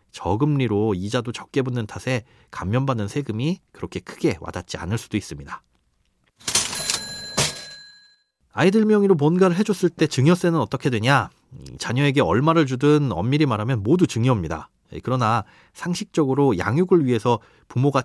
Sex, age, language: male, 30-49, Korean